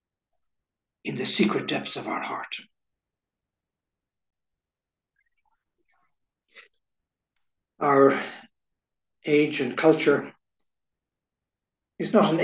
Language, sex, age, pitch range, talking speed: English, male, 60-79, 140-190 Hz, 70 wpm